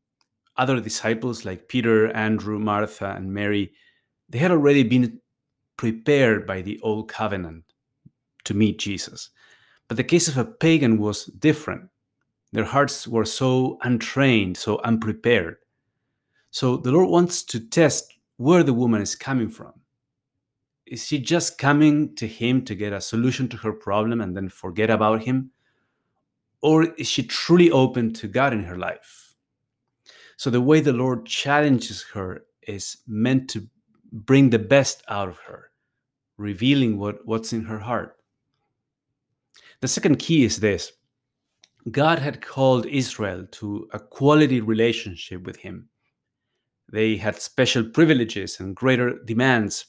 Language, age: English, 30-49